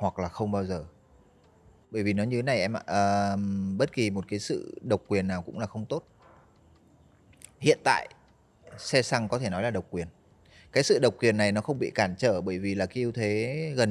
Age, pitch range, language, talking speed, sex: 20-39, 95-120 Hz, Vietnamese, 225 wpm, male